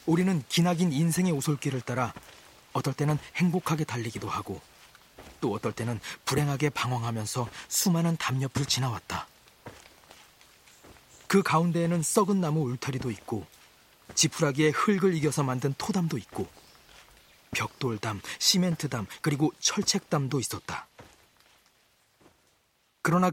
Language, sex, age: Korean, male, 40-59